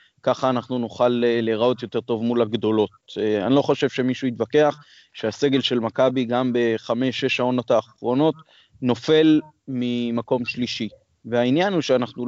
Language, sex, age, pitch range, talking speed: Hebrew, male, 20-39, 120-145 Hz, 125 wpm